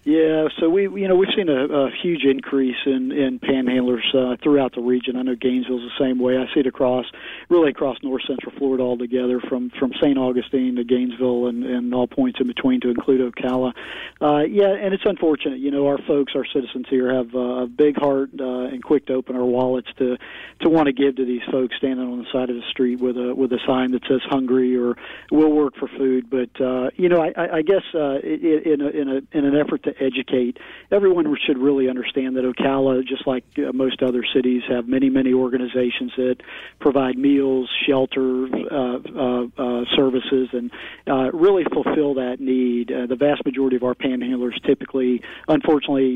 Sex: male